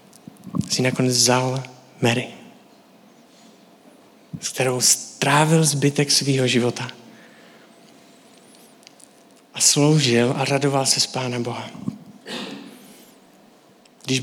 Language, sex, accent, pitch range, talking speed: Czech, male, native, 130-165 Hz, 80 wpm